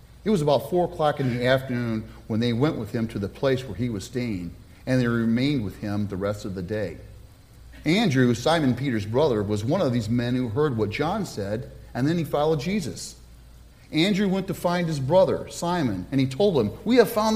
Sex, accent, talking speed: male, American, 220 wpm